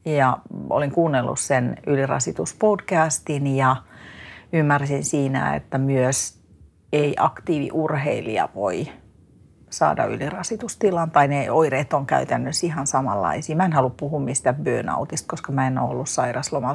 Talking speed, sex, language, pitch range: 125 wpm, female, Finnish, 135-165 Hz